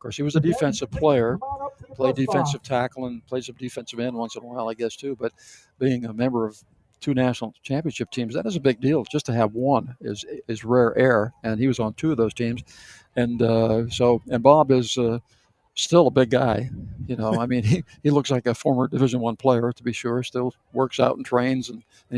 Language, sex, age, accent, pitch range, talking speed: English, male, 60-79, American, 115-135 Hz, 230 wpm